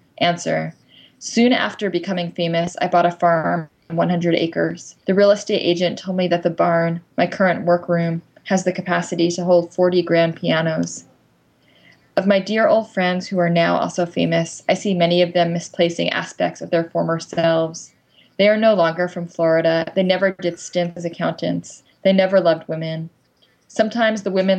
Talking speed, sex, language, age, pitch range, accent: 175 wpm, female, English, 20-39, 165-185 Hz, American